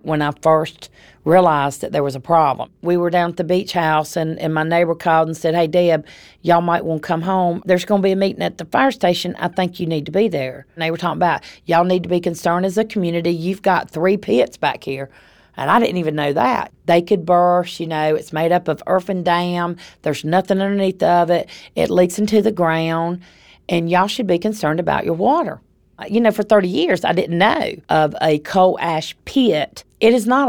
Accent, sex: American, female